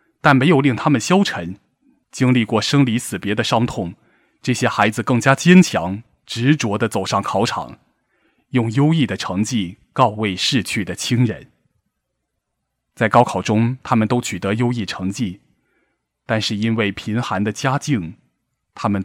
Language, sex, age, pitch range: Chinese, male, 20-39, 105-130 Hz